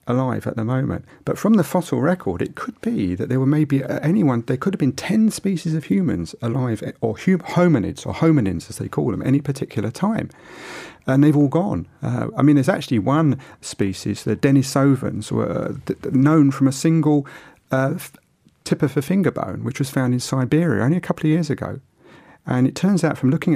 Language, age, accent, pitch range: English, 40-59, British, 125-165 Hz